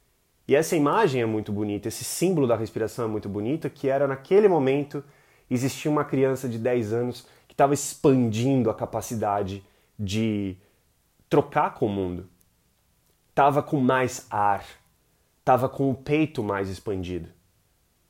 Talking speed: 145 wpm